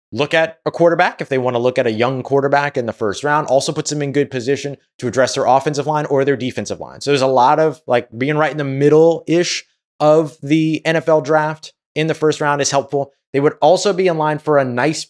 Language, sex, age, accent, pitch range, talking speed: English, male, 30-49, American, 125-155 Hz, 245 wpm